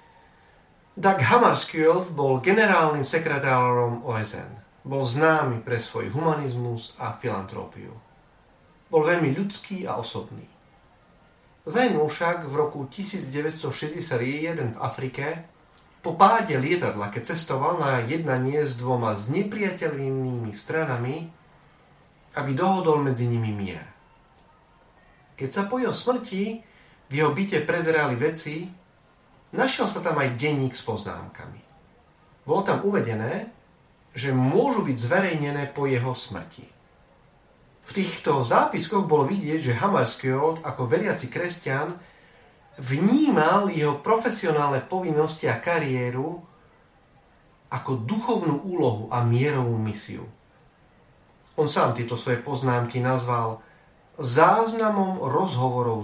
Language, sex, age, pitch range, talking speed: Slovak, male, 40-59, 125-170 Hz, 105 wpm